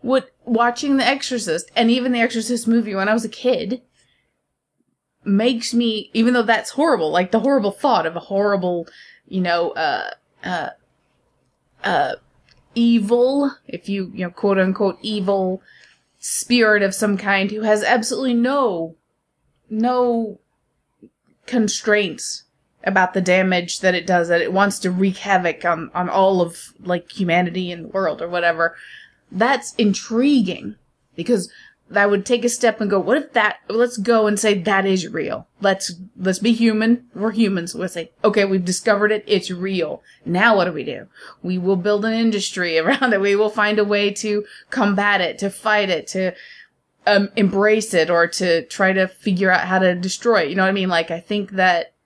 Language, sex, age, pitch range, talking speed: English, female, 20-39, 185-230 Hz, 180 wpm